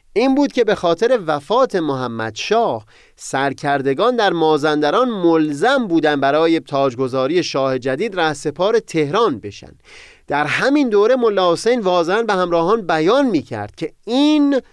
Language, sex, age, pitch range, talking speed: Persian, male, 30-49, 130-195 Hz, 130 wpm